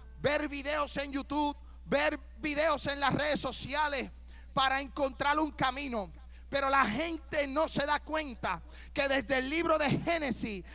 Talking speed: 150 wpm